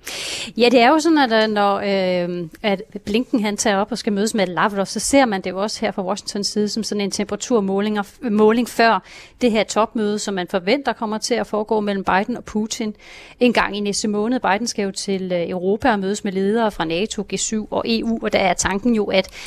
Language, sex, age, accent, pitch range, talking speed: Danish, female, 30-49, native, 195-235 Hz, 230 wpm